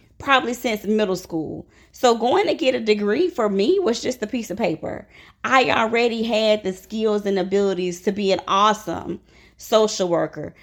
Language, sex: English, female